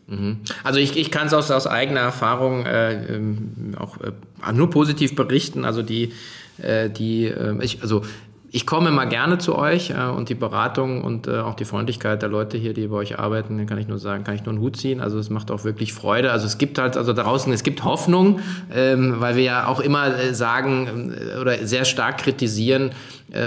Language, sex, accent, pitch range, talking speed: German, male, German, 115-135 Hz, 210 wpm